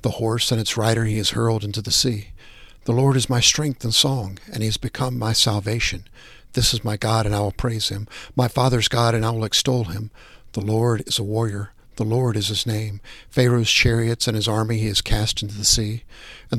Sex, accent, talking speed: male, American, 230 wpm